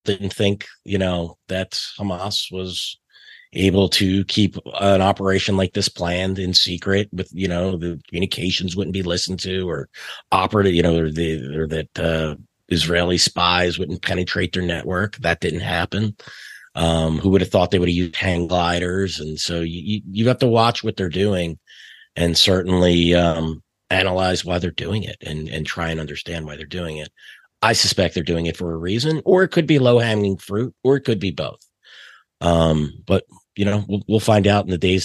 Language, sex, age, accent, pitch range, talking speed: English, male, 30-49, American, 85-100 Hz, 190 wpm